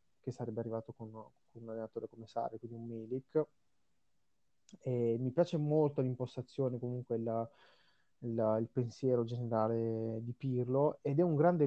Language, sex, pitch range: Italian, male, 115-135 Hz